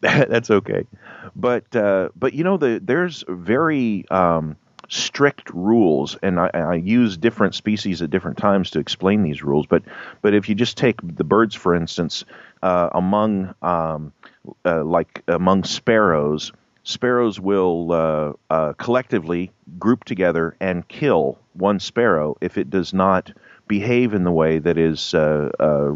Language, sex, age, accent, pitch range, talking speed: English, male, 40-59, American, 80-105 Hz, 150 wpm